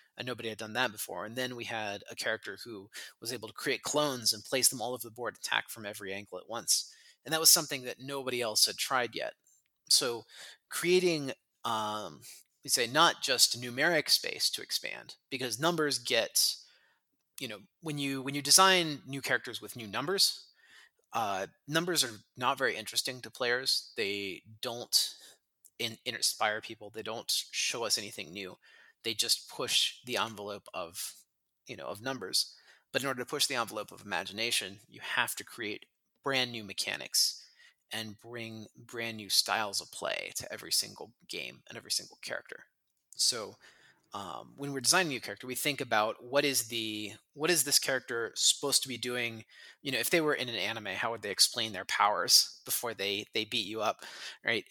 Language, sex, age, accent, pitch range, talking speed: English, male, 30-49, American, 110-140 Hz, 190 wpm